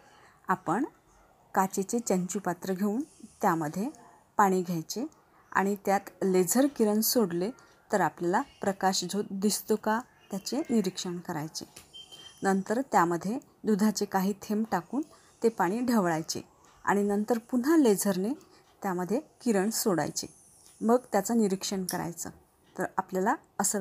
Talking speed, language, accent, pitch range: 110 wpm, Marathi, native, 185-220 Hz